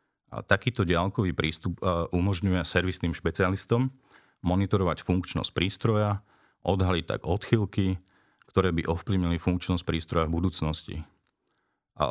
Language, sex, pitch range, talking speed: Slovak, male, 85-105 Hz, 105 wpm